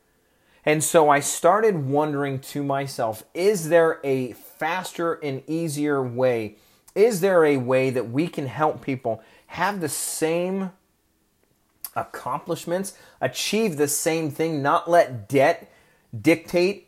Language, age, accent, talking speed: English, 30-49, American, 125 wpm